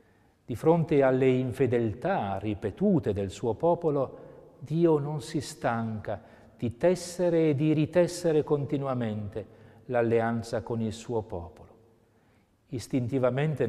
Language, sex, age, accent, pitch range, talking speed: Italian, male, 40-59, native, 110-145 Hz, 105 wpm